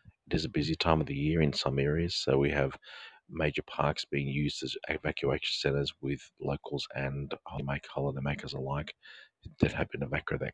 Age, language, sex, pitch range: 40-59, English, male, 70-80 Hz